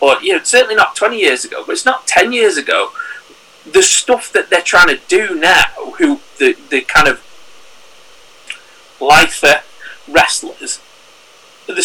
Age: 30-49